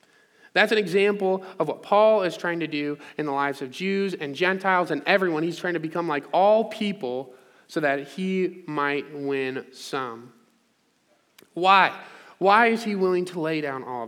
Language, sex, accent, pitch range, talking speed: English, male, American, 140-190 Hz, 175 wpm